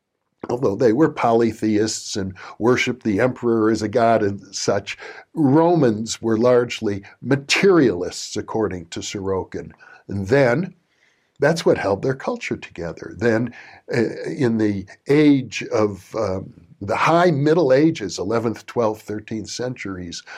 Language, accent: English, American